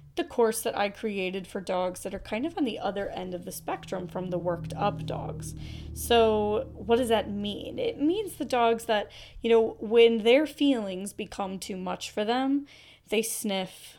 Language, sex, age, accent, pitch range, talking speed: English, female, 20-39, American, 180-230 Hz, 195 wpm